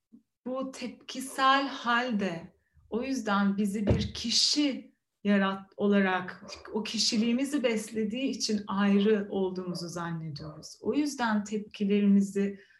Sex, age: female, 30-49